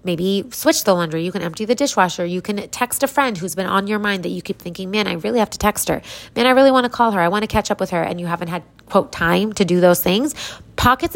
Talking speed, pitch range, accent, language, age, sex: 295 wpm, 175-215 Hz, American, English, 20-39, female